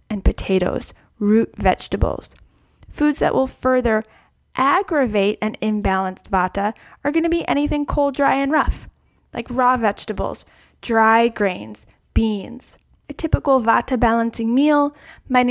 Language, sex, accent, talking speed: English, female, American, 125 wpm